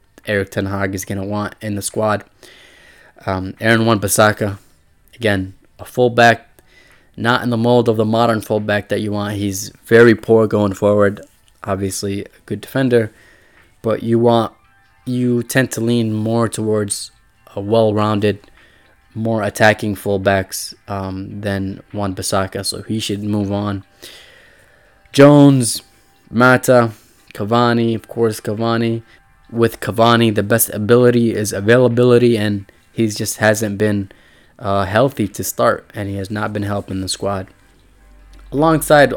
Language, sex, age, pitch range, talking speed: English, male, 20-39, 100-115 Hz, 135 wpm